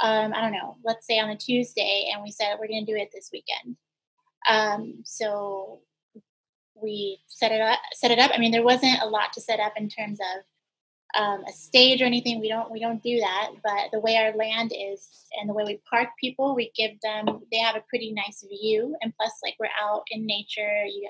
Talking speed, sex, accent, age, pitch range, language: 230 wpm, female, American, 20-39, 210-235 Hz, English